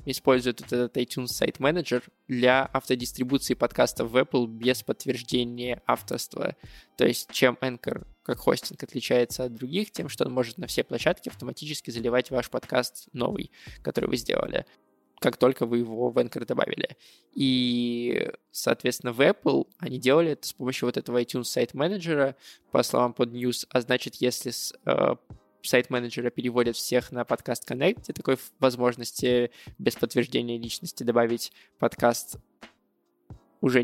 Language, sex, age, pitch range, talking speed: Russian, male, 20-39, 120-130 Hz, 135 wpm